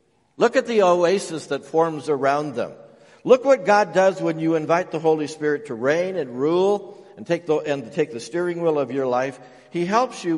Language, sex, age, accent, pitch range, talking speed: English, male, 60-79, American, 135-180 Hz, 195 wpm